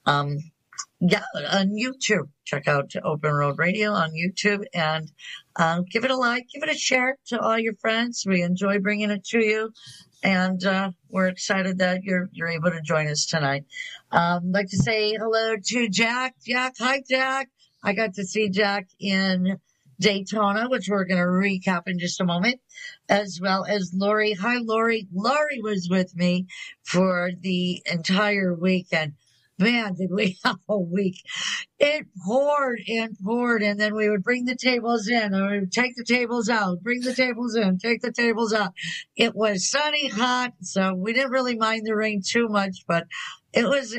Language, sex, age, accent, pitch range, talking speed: English, female, 50-69, American, 180-230 Hz, 180 wpm